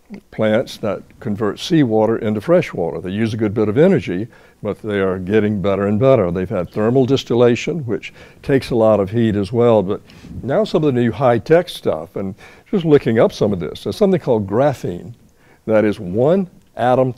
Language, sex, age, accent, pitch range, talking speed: English, male, 60-79, American, 100-130 Hz, 200 wpm